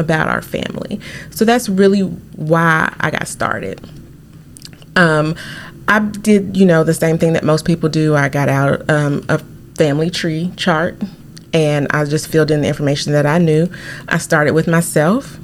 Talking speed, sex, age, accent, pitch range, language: 170 wpm, female, 30-49, American, 145-165 Hz, English